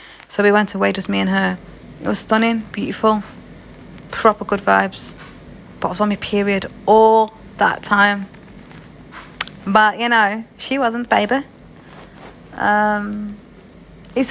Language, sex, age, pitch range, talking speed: English, female, 30-49, 195-225 Hz, 135 wpm